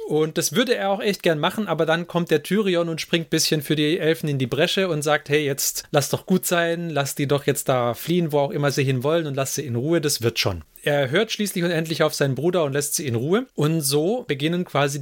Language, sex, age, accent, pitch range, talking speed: German, male, 30-49, German, 140-170 Hz, 270 wpm